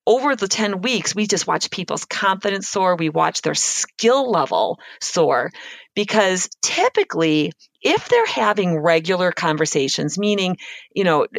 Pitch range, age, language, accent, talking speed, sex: 165-220 Hz, 40-59, English, American, 135 wpm, female